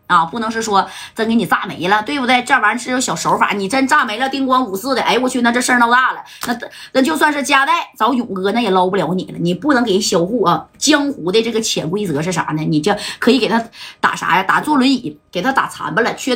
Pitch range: 205-295 Hz